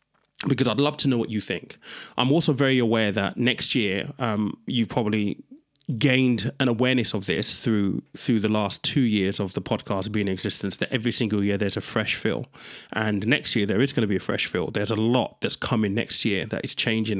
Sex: male